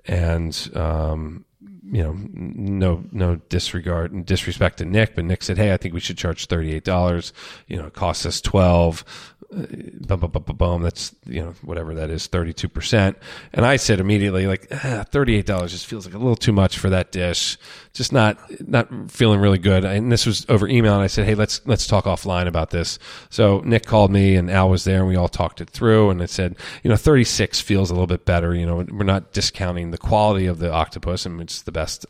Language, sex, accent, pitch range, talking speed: English, male, American, 85-105 Hz, 220 wpm